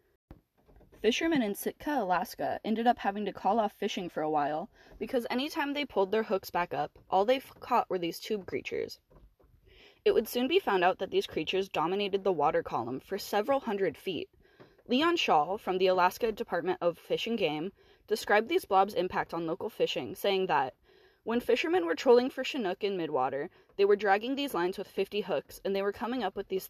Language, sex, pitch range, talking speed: English, female, 185-260 Hz, 200 wpm